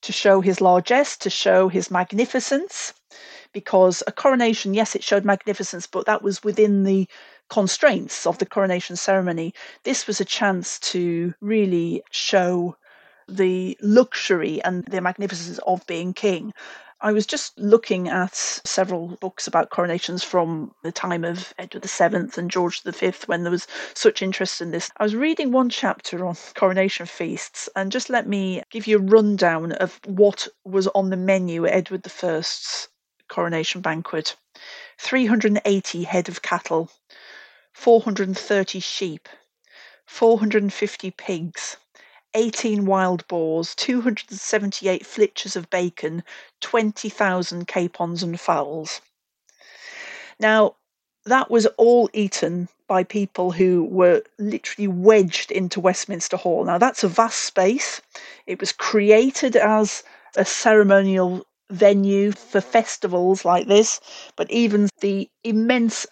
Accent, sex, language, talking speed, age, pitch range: British, female, English, 130 wpm, 40-59, 180-215 Hz